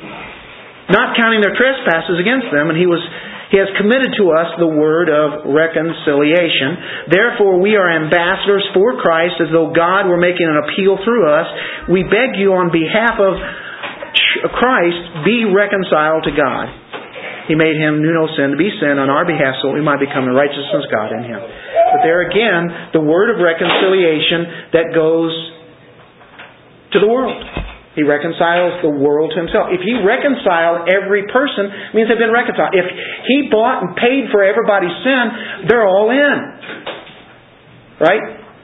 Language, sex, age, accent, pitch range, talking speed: English, male, 50-69, American, 160-215 Hz, 165 wpm